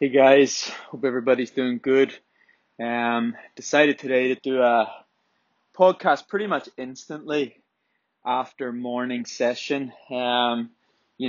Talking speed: 110 wpm